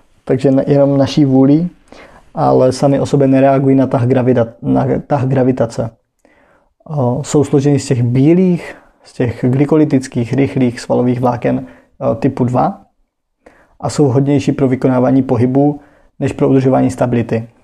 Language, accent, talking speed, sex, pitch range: Czech, native, 120 wpm, male, 125-140 Hz